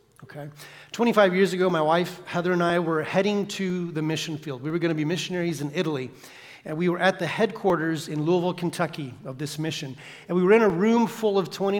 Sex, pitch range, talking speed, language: male, 145-190 Hz, 225 wpm, English